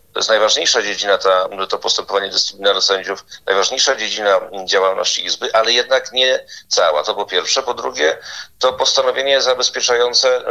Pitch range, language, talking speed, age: 110-150 Hz, Polish, 135 wpm, 40-59